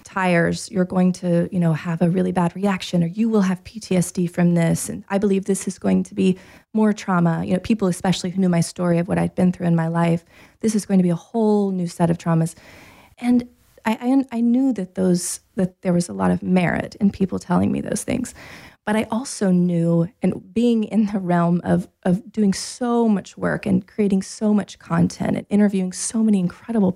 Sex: female